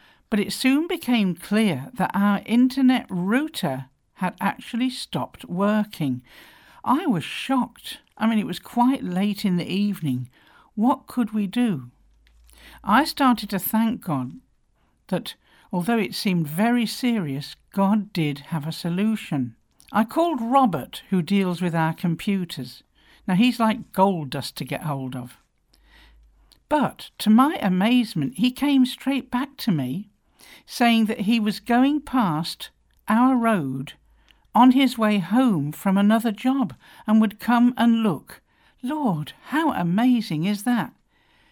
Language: English